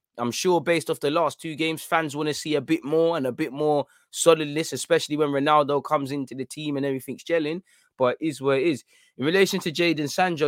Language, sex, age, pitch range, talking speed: English, male, 20-39, 130-160 Hz, 230 wpm